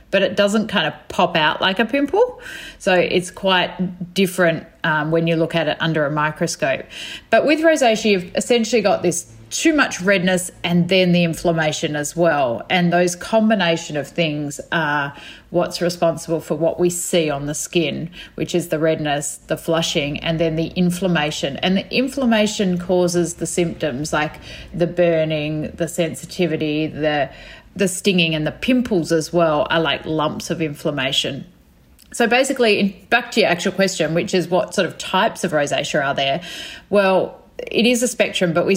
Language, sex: English, female